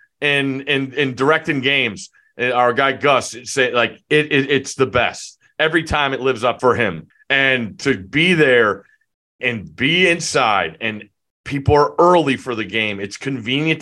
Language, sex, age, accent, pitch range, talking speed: English, male, 30-49, American, 130-160 Hz, 170 wpm